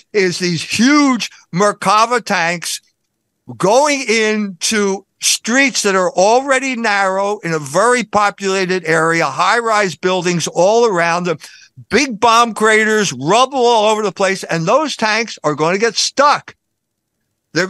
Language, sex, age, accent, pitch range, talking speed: English, male, 60-79, American, 170-225 Hz, 130 wpm